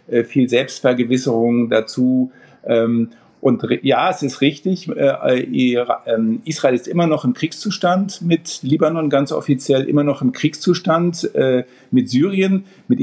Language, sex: German, male